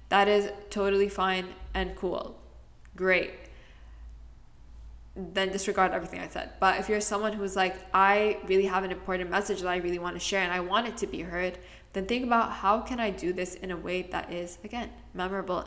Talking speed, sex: 200 wpm, female